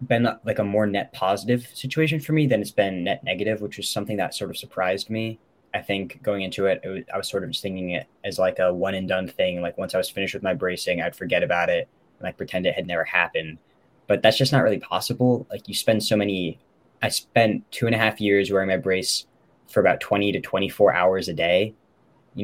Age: 10-29